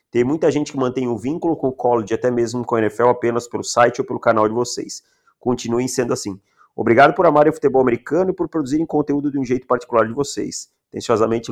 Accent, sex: Brazilian, male